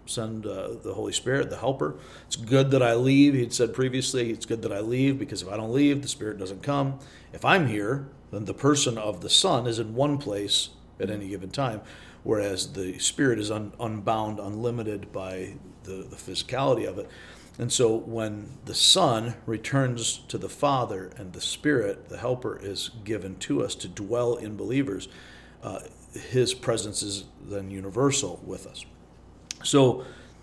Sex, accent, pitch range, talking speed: male, American, 100-130 Hz, 175 wpm